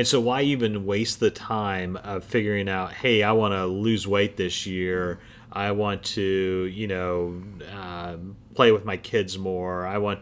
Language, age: English, 30-49